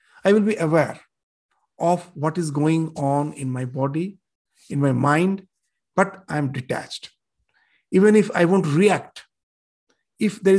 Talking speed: 140 wpm